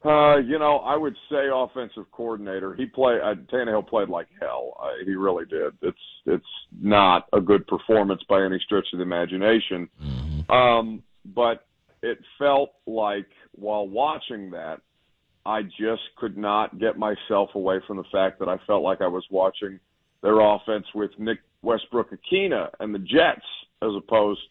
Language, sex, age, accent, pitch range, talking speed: English, male, 40-59, American, 100-120 Hz, 160 wpm